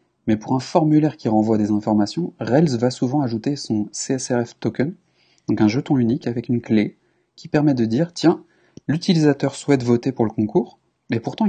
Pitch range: 110-125 Hz